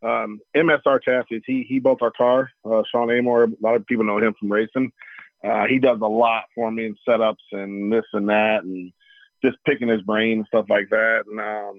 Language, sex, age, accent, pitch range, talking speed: English, male, 40-59, American, 110-125 Hz, 220 wpm